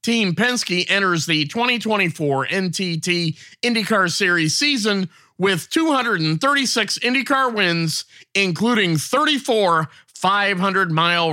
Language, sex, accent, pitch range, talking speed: English, male, American, 160-215 Hz, 90 wpm